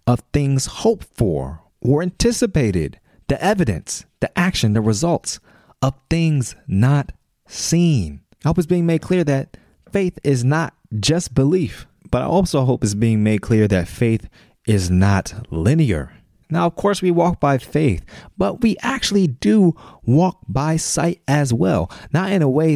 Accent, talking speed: American, 160 wpm